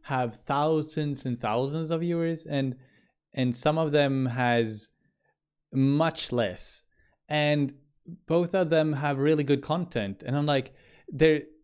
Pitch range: 110-145 Hz